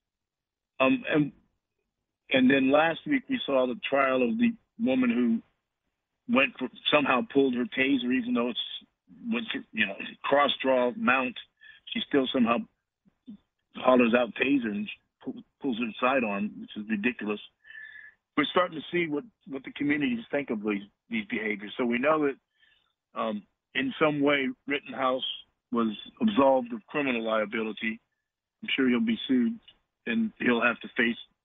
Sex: male